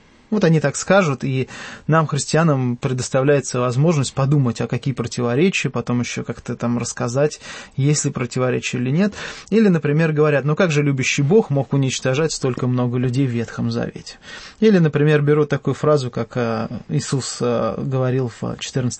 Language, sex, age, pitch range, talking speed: English, male, 20-39, 125-150 Hz, 155 wpm